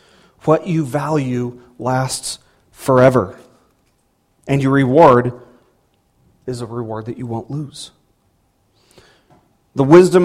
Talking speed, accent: 100 wpm, American